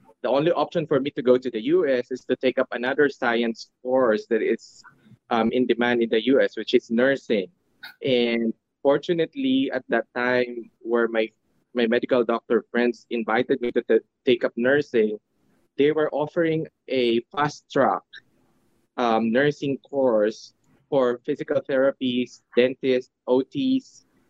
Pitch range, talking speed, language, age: 115-135 Hz, 150 wpm, English, 20-39